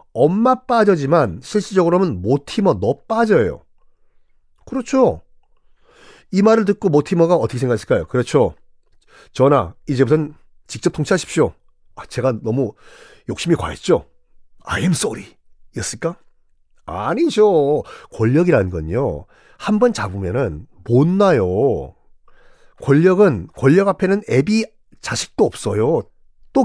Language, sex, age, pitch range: Korean, male, 40-59, 135-225 Hz